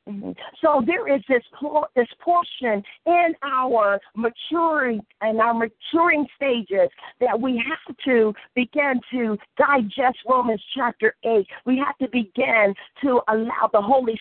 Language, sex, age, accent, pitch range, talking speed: English, female, 50-69, American, 225-285 Hz, 140 wpm